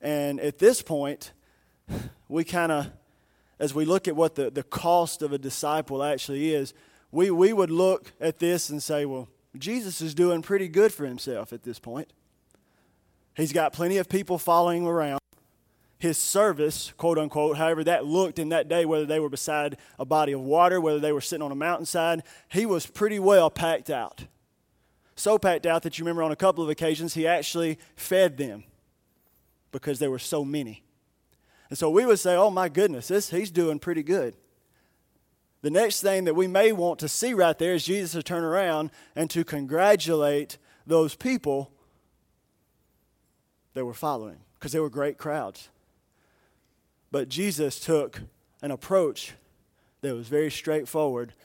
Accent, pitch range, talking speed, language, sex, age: American, 145-175 Hz, 175 wpm, English, male, 20-39